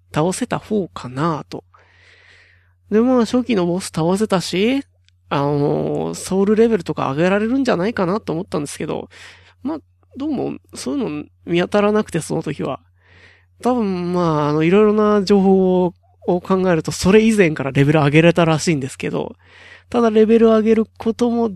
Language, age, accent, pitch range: Japanese, 20-39, native, 140-210 Hz